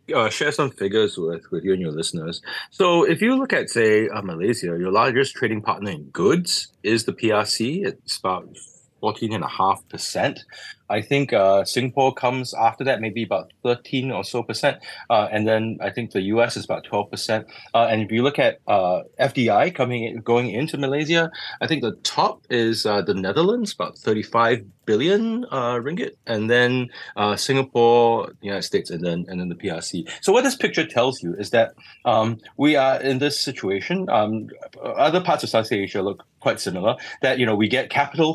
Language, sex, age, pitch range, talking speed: English, male, 20-39, 105-130 Hz, 190 wpm